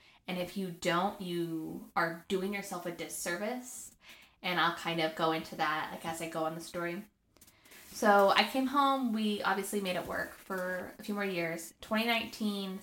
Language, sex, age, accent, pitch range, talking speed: English, female, 20-39, American, 175-220 Hz, 185 wpm